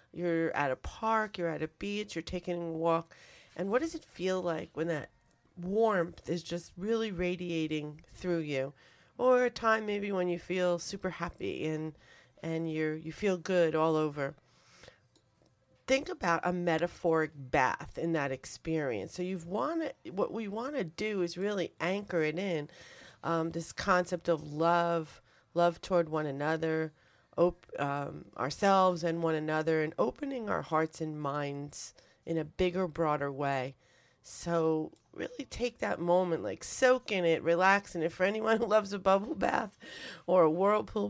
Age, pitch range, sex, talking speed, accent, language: 40-59, 155-195 Hz, female, 160 wpm, American, English